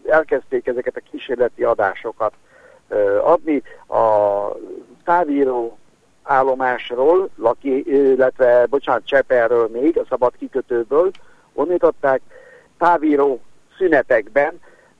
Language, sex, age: Hungarian, male, 60-79